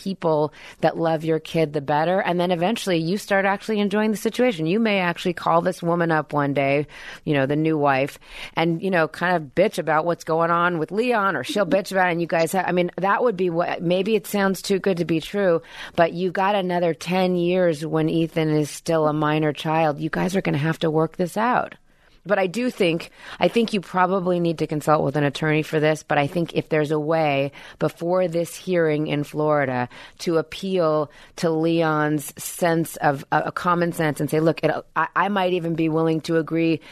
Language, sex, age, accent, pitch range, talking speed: English, female, 30-49, American, 155-185 Hz, 225 wpm